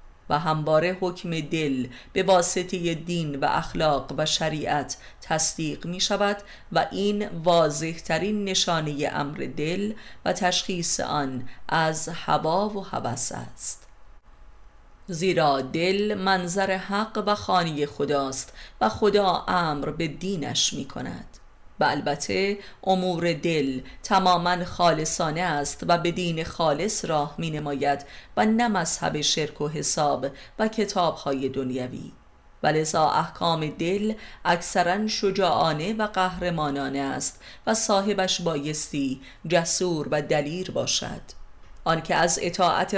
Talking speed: 115 wpm